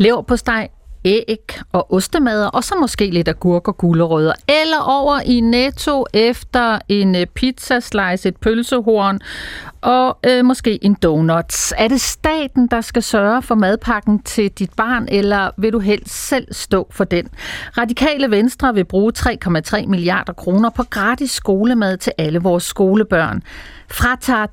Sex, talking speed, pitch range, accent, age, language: female, 150 wpm, 185-250 Hz, native, 40-59, Danish